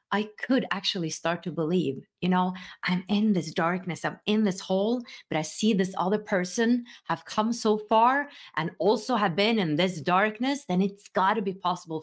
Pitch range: 165-225 Hz